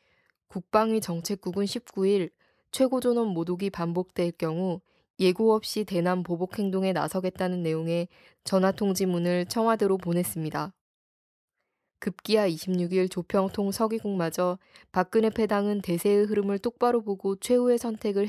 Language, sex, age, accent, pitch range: Korean, female, 20-39, native, 175-215 Hz